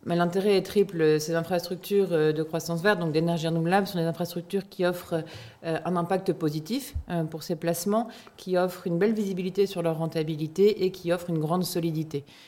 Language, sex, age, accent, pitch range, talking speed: French, female, 40-59, French, 165-200 Hz, 175 wpm